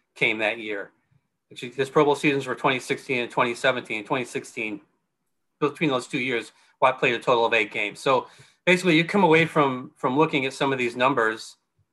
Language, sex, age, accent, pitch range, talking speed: English, male, 30-49, American, 115-140 Hz, 180 wpm